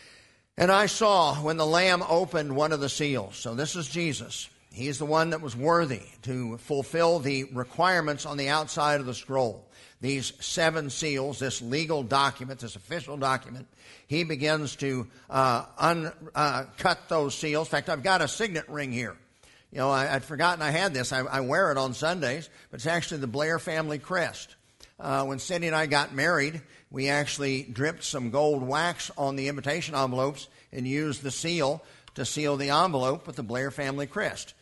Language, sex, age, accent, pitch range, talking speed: English, male, 50-69, American, 135-155 Hz, 185 wpm